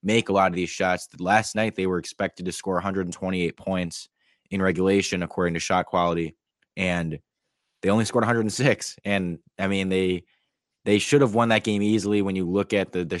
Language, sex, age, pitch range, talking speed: English, male, 20-39, 90-105 Hz, 195 wpm